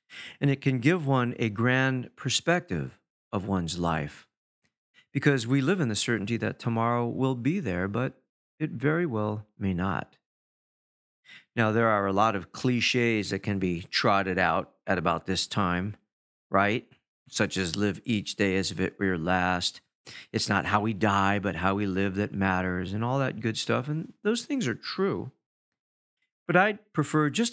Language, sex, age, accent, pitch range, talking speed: English, male, 40-59, American, 100-140 Hz, 175 wpm